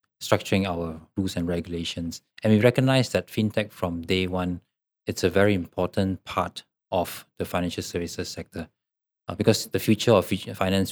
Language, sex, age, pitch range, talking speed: English, male, 20-39, 90-110 Hz, 160 wpm